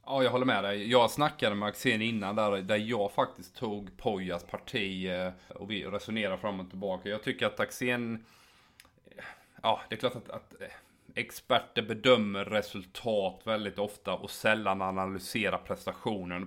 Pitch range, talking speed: 100-115 Hz, 155 wpm